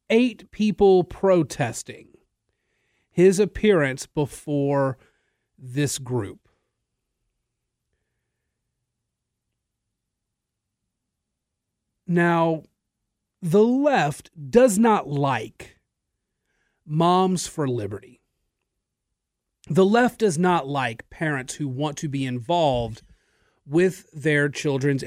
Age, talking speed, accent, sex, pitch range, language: 40-59, 75 wpm, American, male, 135-200 Hz, English